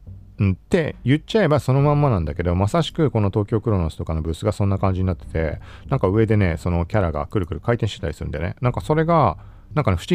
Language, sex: Japanese, male